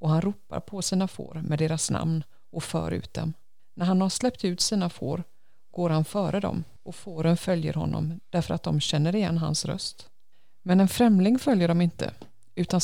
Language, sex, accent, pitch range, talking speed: Swedish, female, native, 160-190 Hz, 195 wpm